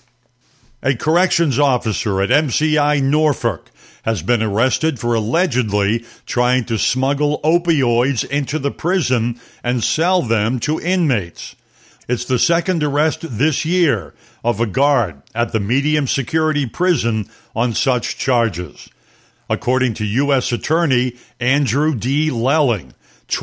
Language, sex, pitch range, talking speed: English, male, 115-150 Hz, 120 wpm